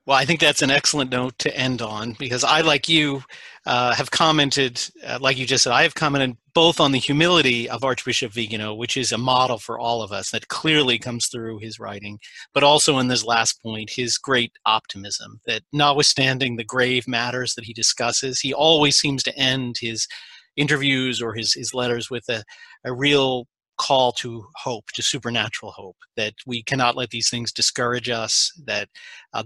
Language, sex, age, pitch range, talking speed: English, male, 40-59, 120-140 Hz, 190 wpm